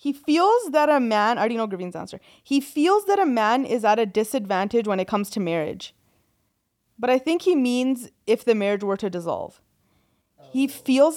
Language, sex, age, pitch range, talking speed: English, female, 20-39, 190-255 Hz, 200 wpm